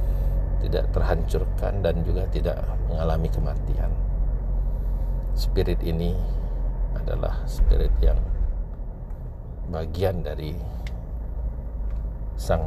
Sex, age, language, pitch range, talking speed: male, 50-69, Indonesian, 75-95 Hz, 70 wpm